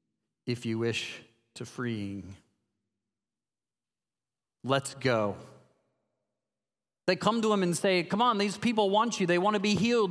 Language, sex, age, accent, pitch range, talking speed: English, male, 40-59, American, 115-170 Hz, 140 wpm